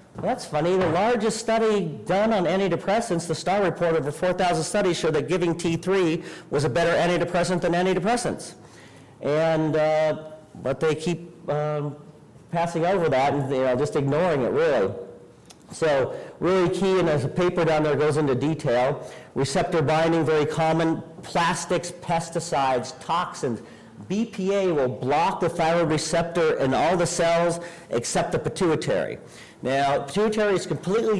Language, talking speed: English, 150 wpm